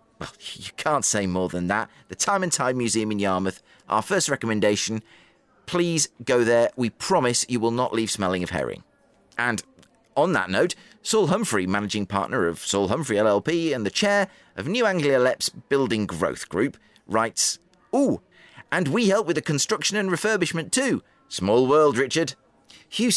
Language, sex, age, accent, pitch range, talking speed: English, male, 30-49, British, 100-165 Hz, 170 wpm